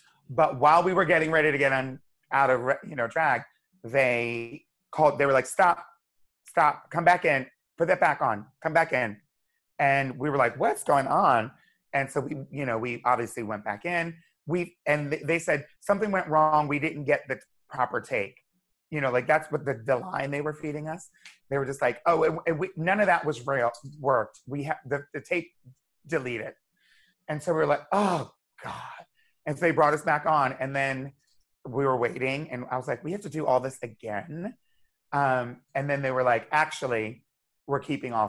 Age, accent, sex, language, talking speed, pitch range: 30-49, American, male, English, 210 wpm, 130-160 Hz